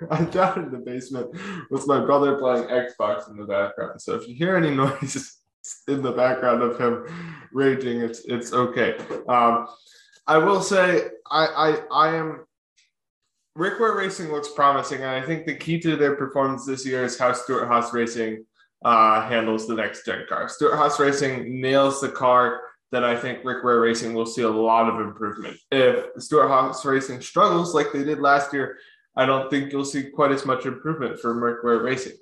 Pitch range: 120-165 Hz